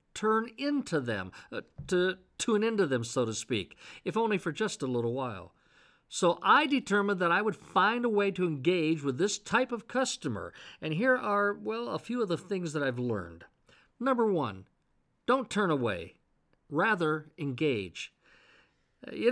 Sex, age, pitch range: male, 50-69, 145-215 Hz